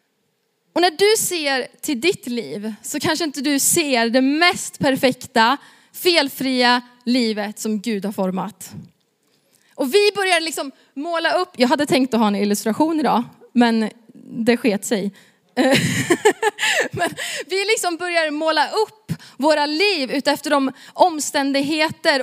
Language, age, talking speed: Swedish, 20-39, 135 wpm